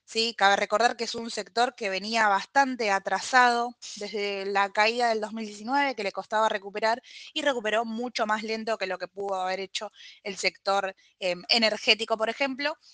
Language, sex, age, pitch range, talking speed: Spanish, female, 20-39, 195-240 Hz, 165 wpm